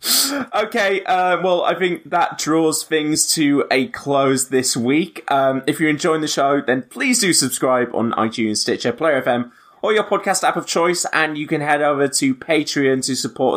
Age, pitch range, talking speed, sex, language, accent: 20-39, 115-150 Hz, 190 wpm, male, English, British